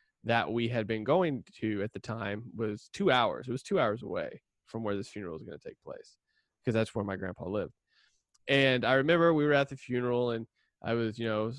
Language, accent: English, American